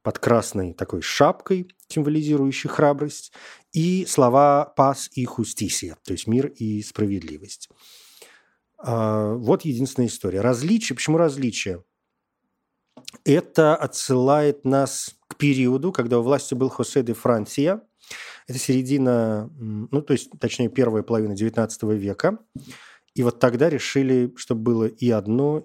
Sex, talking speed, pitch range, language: male, 120 wpm, 115-150 Hz, Russian